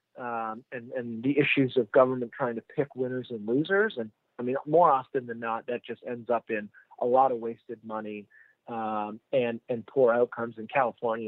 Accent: American